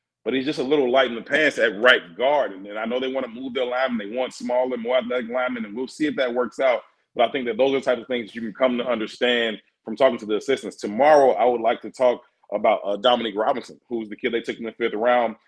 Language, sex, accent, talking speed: English, male, American, 285 wpm